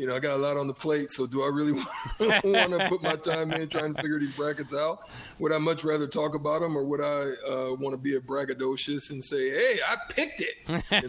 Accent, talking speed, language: American, 260 wpm, English